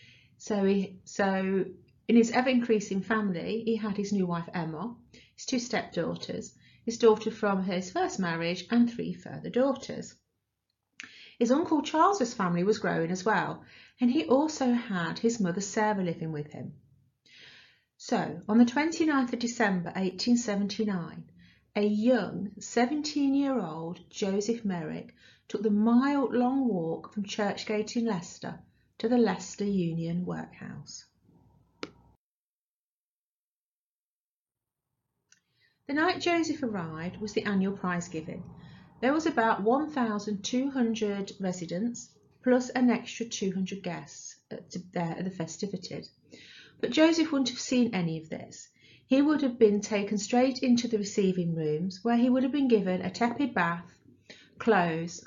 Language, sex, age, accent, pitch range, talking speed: English, female, 40-59, British, 180-245 Hz, 130 wpm